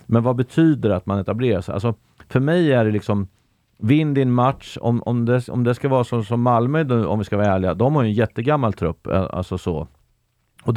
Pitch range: 100-120 Hz